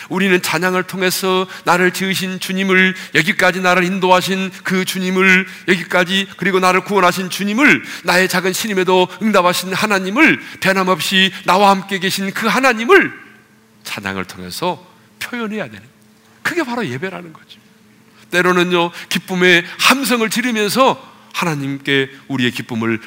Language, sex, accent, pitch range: Korean, male, native, 150-205 Hz